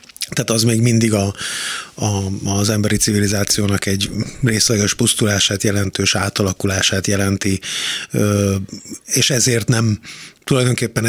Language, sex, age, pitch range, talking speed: Hungarian, male, 30-49, 105-130 Hz, 90 wpm